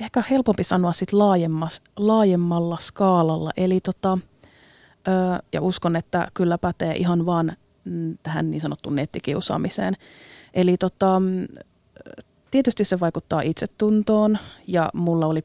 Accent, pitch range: native, 160-190 Hz